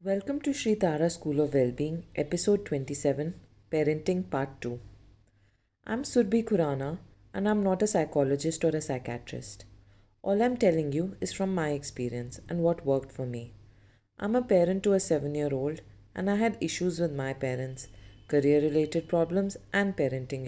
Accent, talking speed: native, 160 wpm